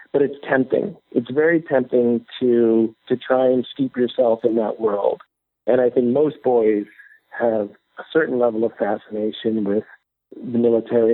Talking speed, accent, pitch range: 155 wpm, American, 105-130 Hz